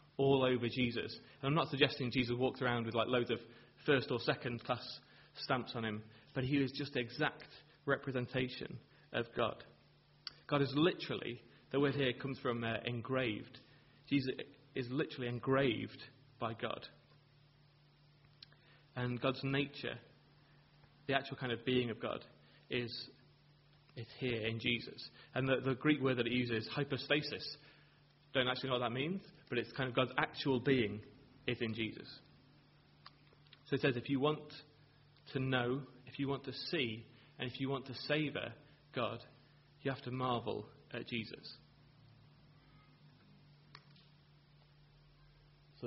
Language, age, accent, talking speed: English, 30-49, British, 145 wpm